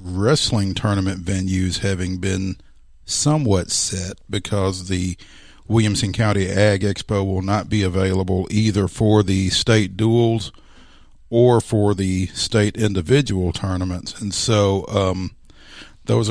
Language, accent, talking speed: English, American, 120 wpm